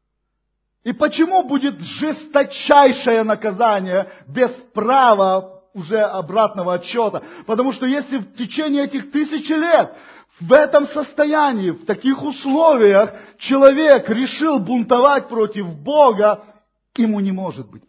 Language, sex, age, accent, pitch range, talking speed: Russian, male, 40-59, native, 210-280 Hz, 110 wpm